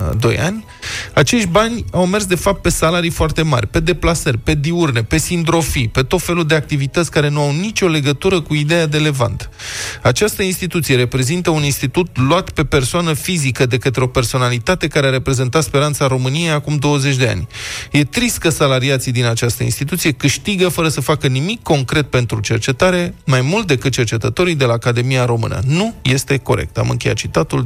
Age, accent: 20-39, native